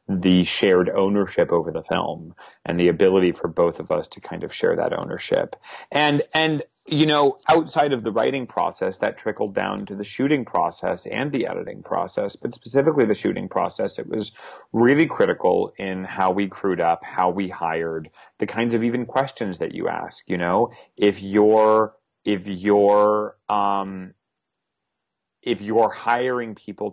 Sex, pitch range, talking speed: male, 100-125 Hz, 165 wpm